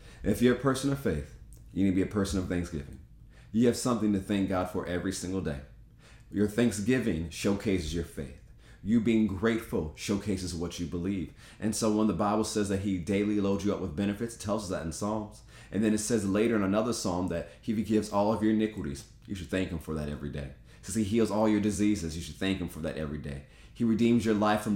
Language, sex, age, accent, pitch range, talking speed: English, male, 30-49, American, 90-110 Hz, 235 wpm